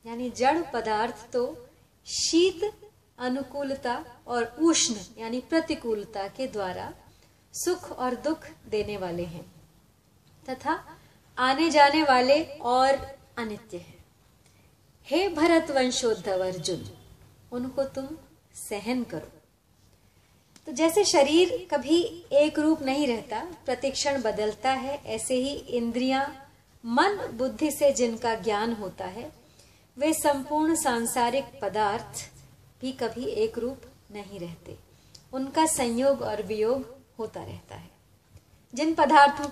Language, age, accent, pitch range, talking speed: Hindi, 30-49, native, 220-295 Hz, 110 wpm